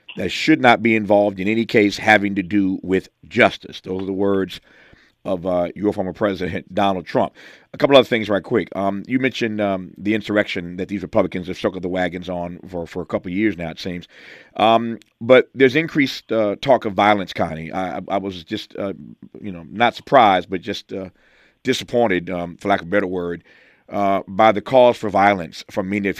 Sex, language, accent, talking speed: male, English, American, 210 wpm